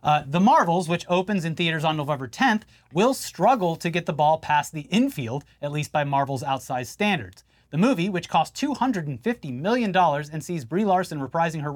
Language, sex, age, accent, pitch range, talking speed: English, male, 30-49, American, 140-195 Hz, 190 wpm